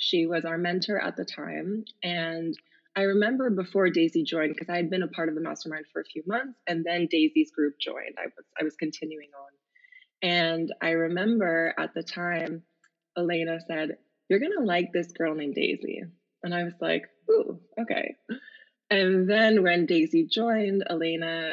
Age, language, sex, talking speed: 20-39, English, female, 180 wpm